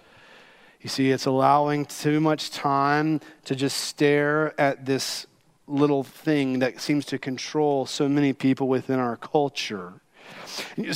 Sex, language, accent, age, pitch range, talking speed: male, English, American, 40-59, 140-165 Hz, 135 wpm